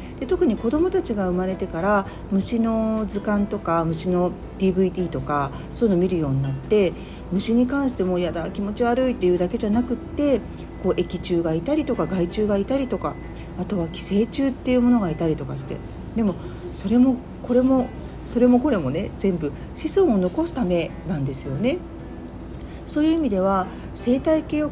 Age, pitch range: 40-59, 155-235 Hz